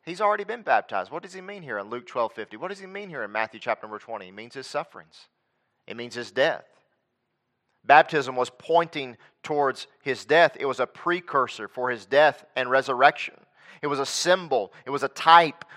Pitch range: 140-175 Hz